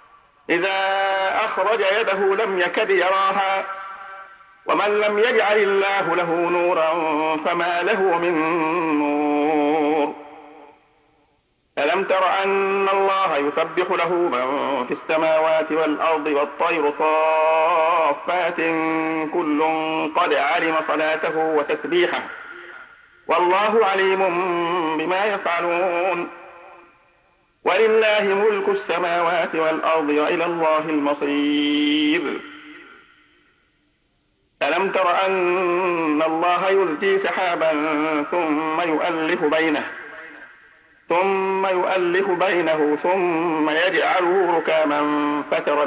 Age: 50-69